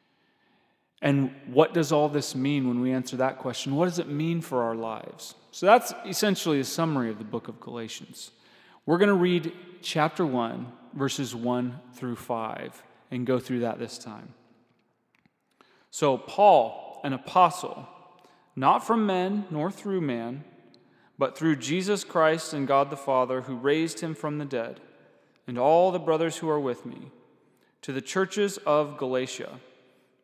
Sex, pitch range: male, 130-170 Hz